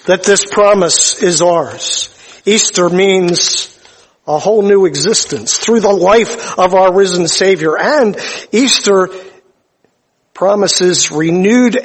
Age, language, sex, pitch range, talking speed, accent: 50-69, English, male, 175-200 Hz, 110 wpm, American